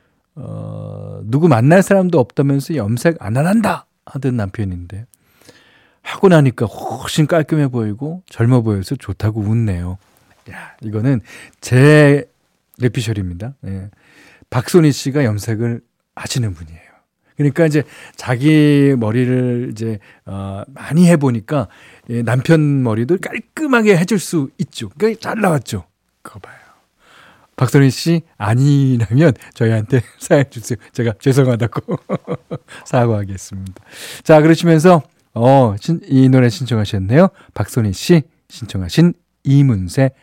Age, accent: 40-59, native